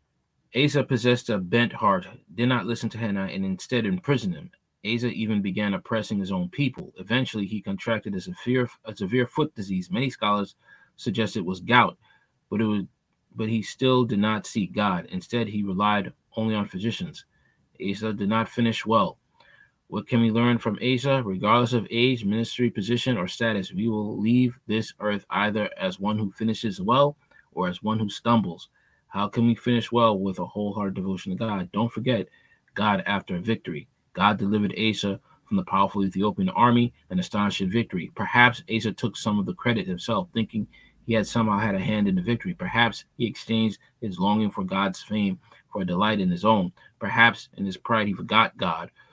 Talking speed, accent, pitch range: 185 wpm, American, 100-120 Hz